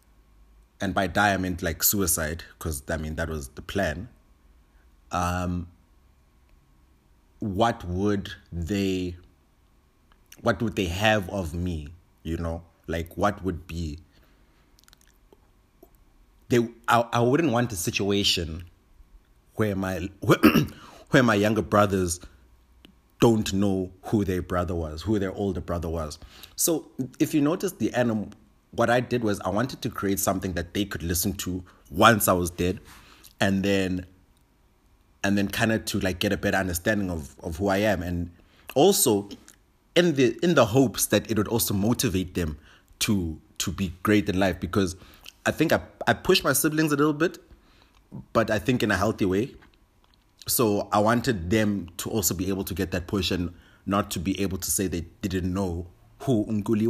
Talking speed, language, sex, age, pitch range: 165 wpm, English, male, 30-49, 85-110 Hz